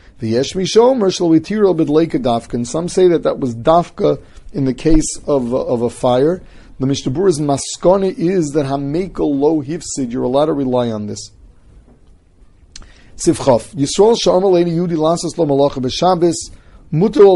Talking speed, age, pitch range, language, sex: 160 wpm, 40-59, 130-160 Hz, English, male